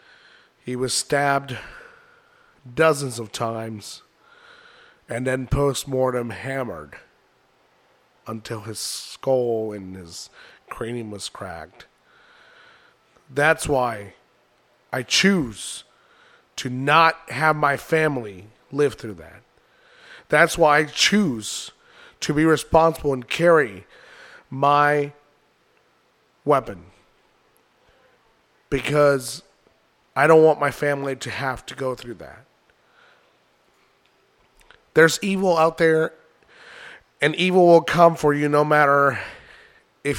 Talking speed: 100 wpm